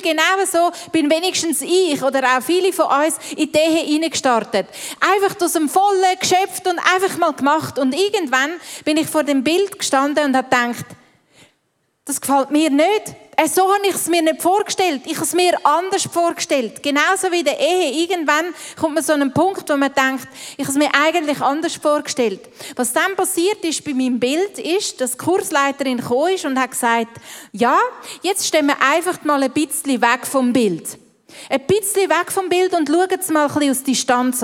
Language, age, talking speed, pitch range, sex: English, 30-49, 195 wpm, 270-345 Hz, female